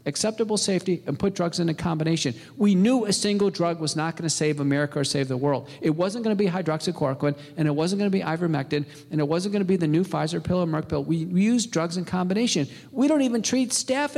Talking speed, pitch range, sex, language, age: 235 wpm, 150-190 Hz, male, English, 50-69